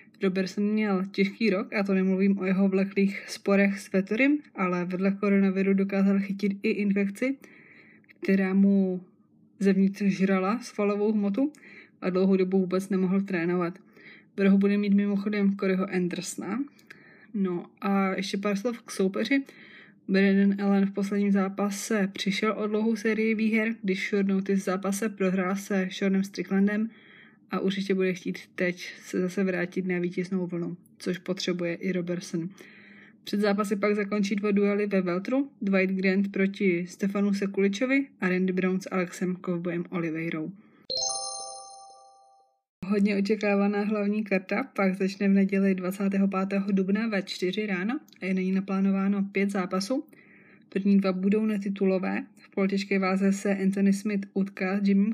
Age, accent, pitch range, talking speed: 20-39, native, 185-205 Hz, 145 wpm